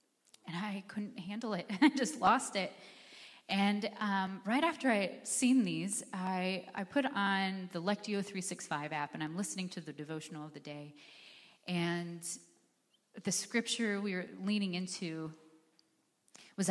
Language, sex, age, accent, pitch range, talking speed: English, female, 30-49, American, 170-230 Hz, 145 wpm